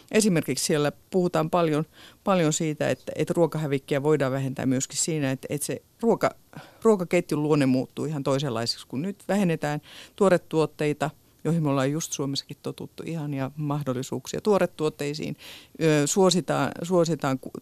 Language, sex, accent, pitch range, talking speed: Finnish, female, native, 130-155 Hz, 130 wpm